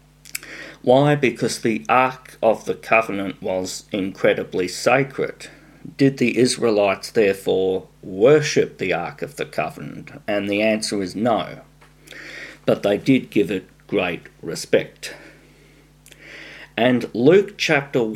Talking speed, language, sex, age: 115 wpm, English, male, 50-69